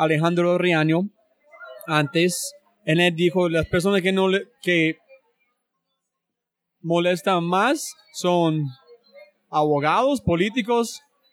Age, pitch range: 30-49, 165-205 Hz